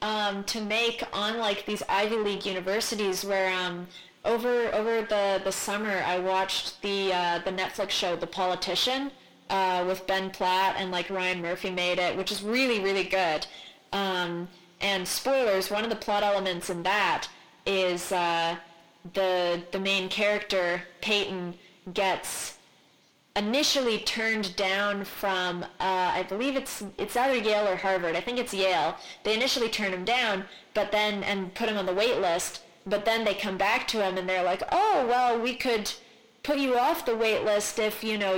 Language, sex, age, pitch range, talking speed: English, female, 20-39, 185-210 Hz, 175 wpm